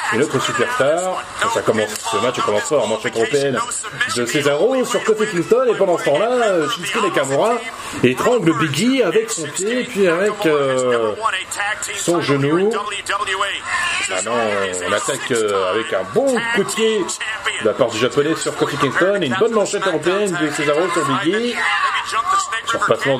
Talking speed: 160 wpm